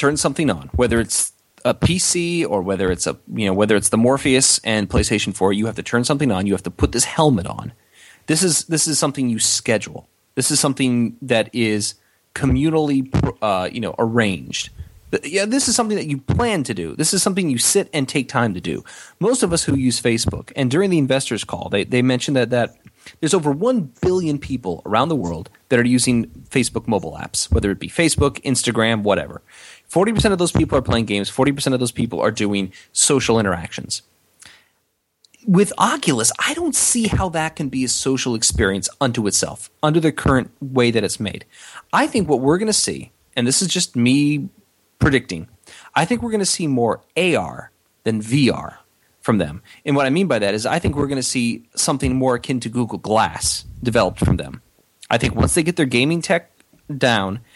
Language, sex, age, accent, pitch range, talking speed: English, male, 30-49, American, 110-155 Hz, 205 wpm